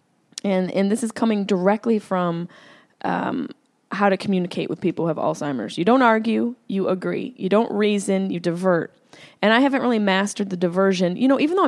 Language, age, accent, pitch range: English, 20-39, American, 175-230 Hz